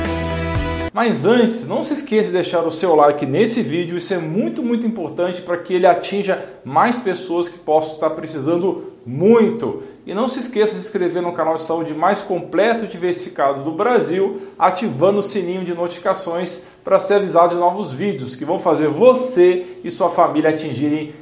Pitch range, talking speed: 160-205 Hz, 180 wpm